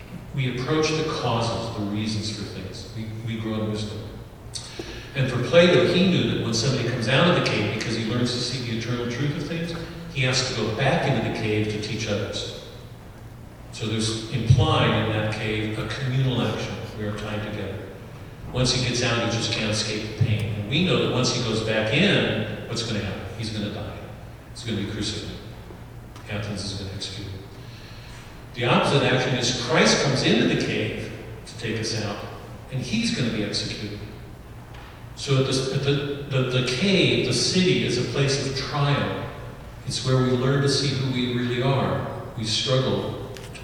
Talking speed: 190 wpm